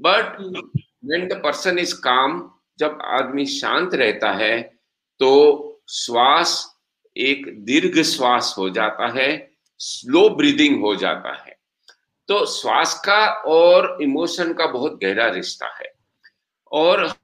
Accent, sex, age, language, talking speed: Indian, male, 50-69, English, 120 wpm